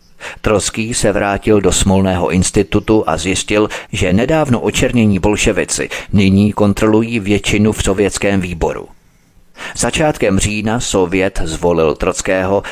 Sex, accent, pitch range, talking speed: male, native, 95-110 Hz, 110 wpm